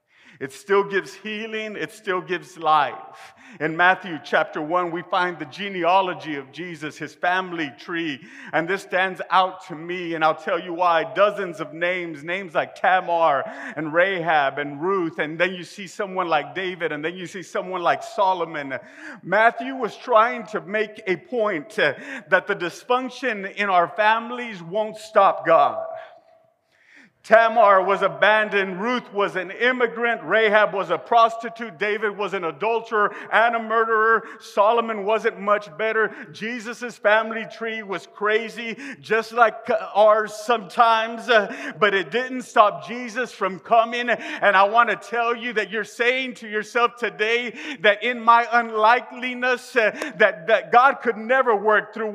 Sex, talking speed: male, 155 wpm